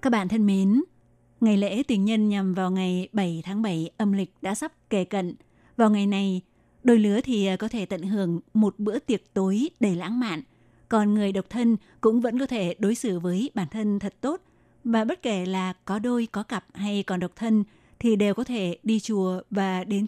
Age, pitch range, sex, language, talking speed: 20-39, 190-225 Hz, female, Vietnamese, 215 wpm